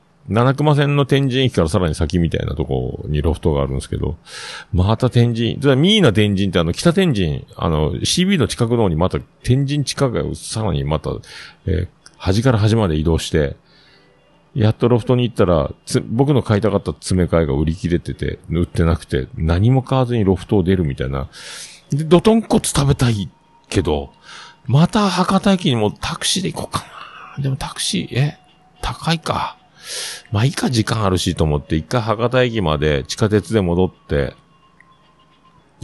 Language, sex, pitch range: Japanese, male, 85-140 Hz